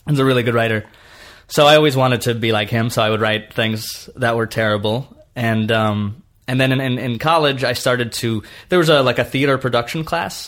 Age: 20-39